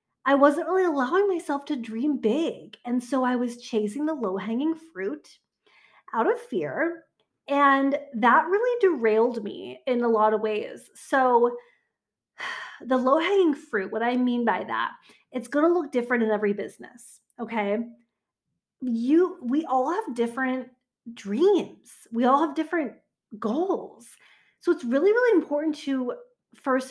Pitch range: 225-295 Hz